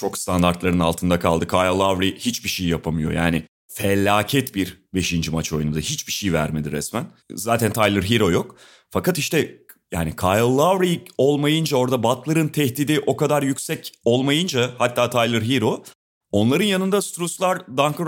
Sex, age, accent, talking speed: male, 30-49, native, 145 wpm